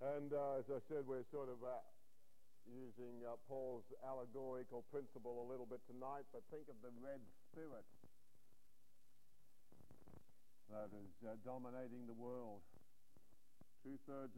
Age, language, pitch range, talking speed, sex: 50-69, English, 115-140 Hz, 130 wpm, male